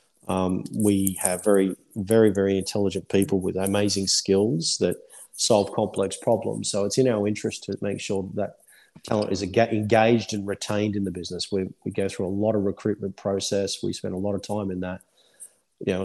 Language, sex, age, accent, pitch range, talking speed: English, male, 40-59, Australian, 95-110 Hz, 185 wpm